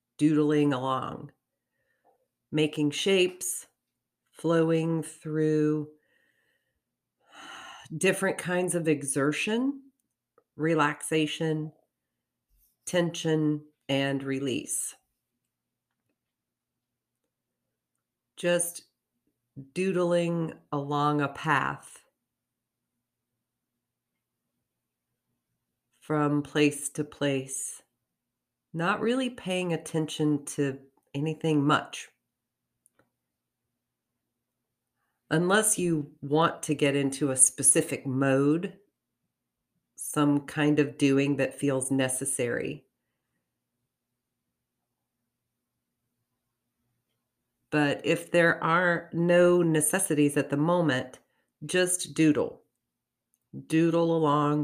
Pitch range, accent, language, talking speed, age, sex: 135-165 Hz, American, English, 65 wpm, 40-59, female